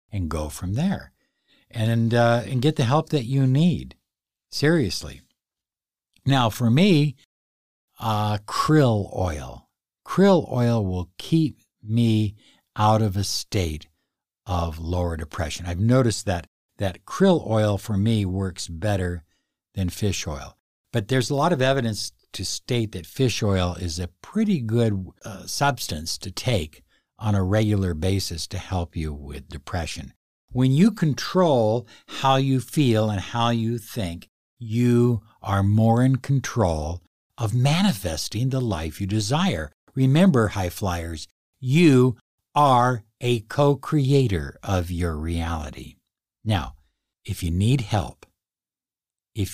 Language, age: English, 60-79